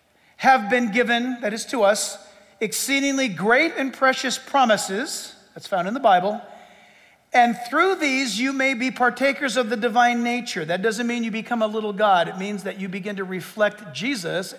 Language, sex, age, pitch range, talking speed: English, male, 50-69, 180-255 Hz, 180 wpm